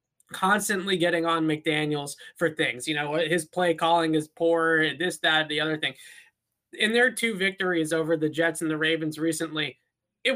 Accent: American